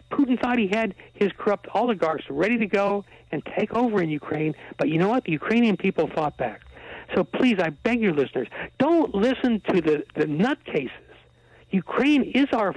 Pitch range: 150-245 Hz